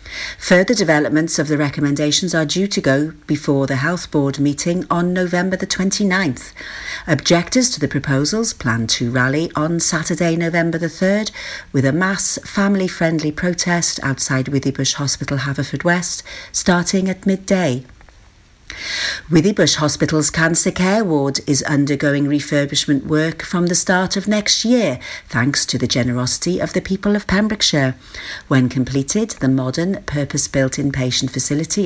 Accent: British